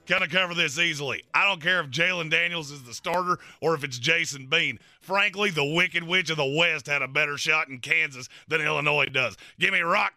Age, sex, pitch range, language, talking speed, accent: 30-49, male, 150-195 Hz, English, 225 wpm, American